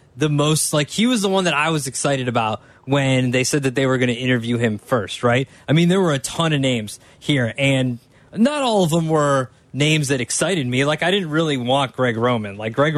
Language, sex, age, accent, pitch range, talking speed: English, male, 20-39, American, 125-150 Hz, 240 wpm